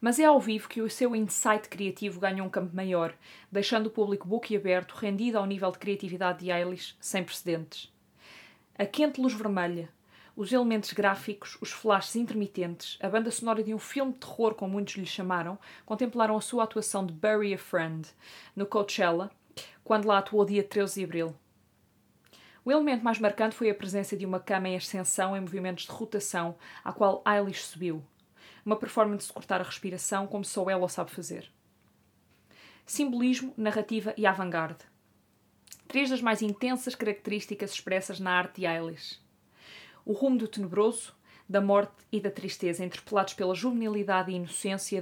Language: Portuguese